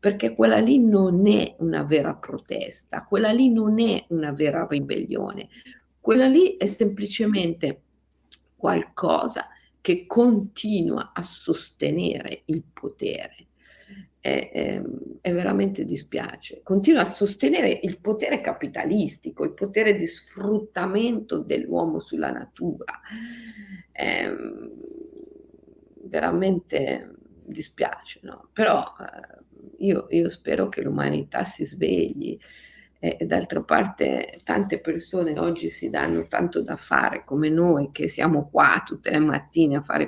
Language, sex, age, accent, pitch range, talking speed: Italian, female, 50-69, native, 150-215 Hz, 115 wpm